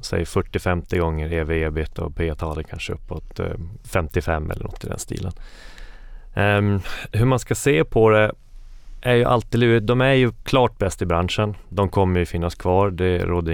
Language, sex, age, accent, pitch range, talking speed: Swedish, male, 30-49, native, 85-105 Hz, 165 wpm